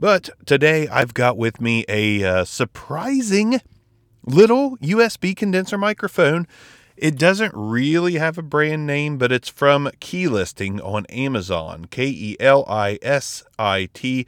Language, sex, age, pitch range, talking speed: English, male, 30-49, 105-150 Hz, 115 wpm